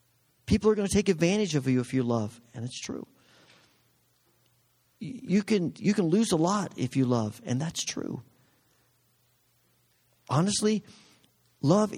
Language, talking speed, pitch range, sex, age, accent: English, 140 wpm, 125-180 Hz, male, 50-69, American